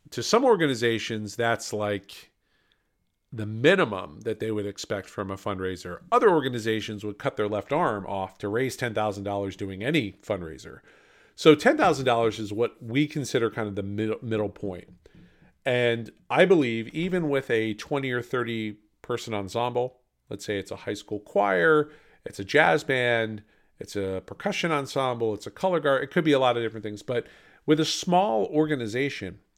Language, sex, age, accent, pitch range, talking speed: English, male, 40-59, American, 105-135 Hz, 165 wpm